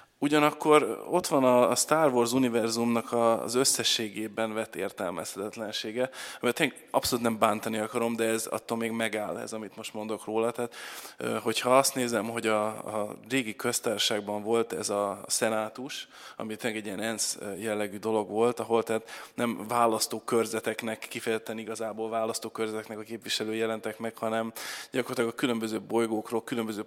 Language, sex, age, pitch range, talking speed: Hungarian, male, 20-39, 110-125 Hz, 140 wpm